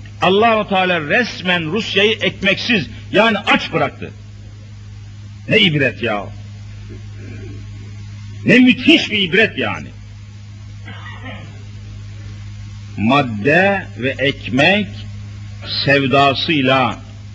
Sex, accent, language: male, native, Turkish